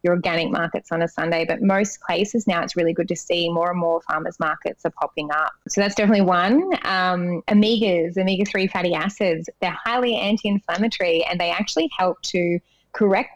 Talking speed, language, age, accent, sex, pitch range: 185 wpm, English, 20-39, Australian, female, 165-195 Hz